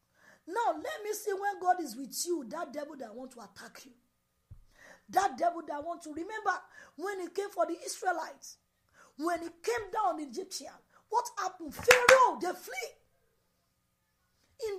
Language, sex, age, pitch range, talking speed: English, female, 40-59, 215-345 Hz, 160 wpm